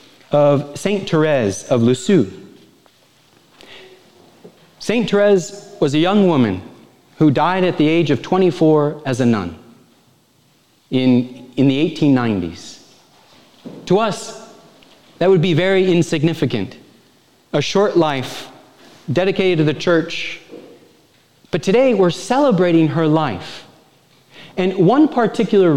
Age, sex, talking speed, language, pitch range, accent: 30-49, male, 110 wpm, English, 130-185 Hz, American